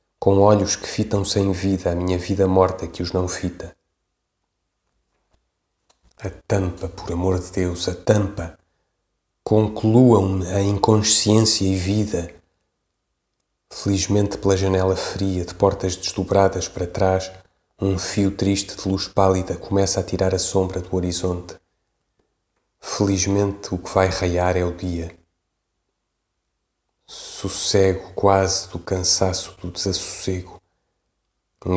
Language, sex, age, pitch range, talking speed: Portuguese, male, 30-49, 90-95 Hz, 120 wpm